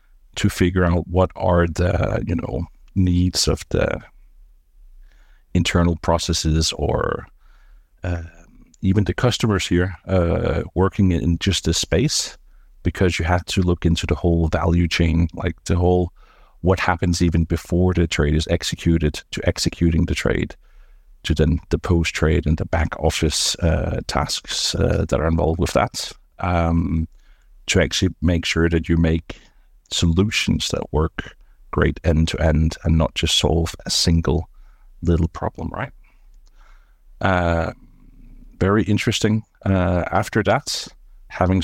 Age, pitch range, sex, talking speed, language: 50-69, 80-95 Hz, male, 140 wpm, English